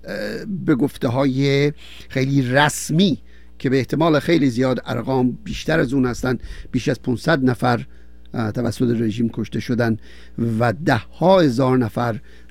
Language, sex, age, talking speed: English, male, 50-69, 135 wpm